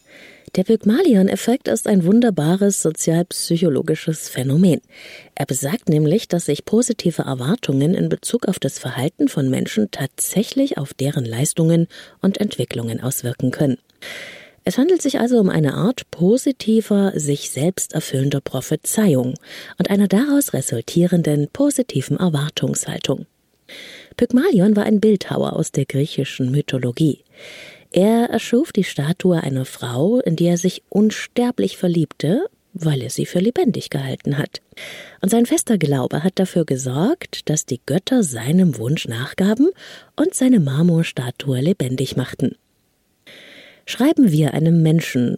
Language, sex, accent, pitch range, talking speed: German, female, German, 145-215 Hz, 125 wpm